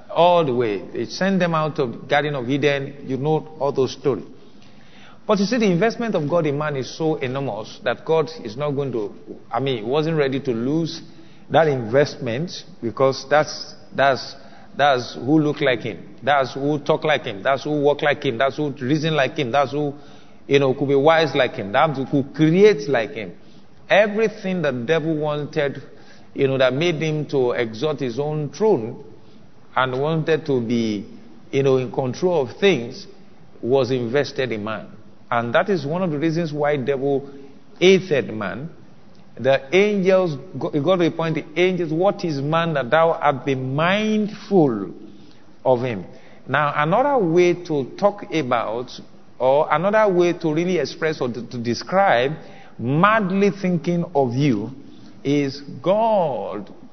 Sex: male